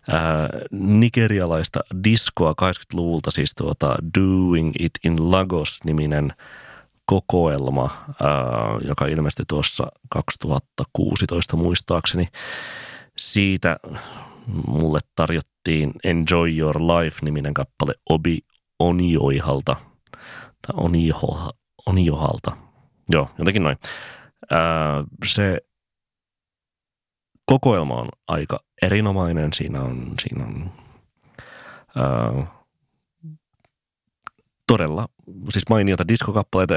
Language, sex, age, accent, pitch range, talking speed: Finnish, male, 30-49, native, 75-95 Hz, 75 wpm